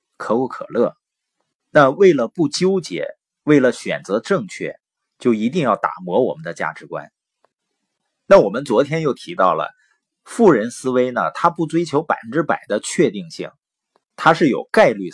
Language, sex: Chinese, male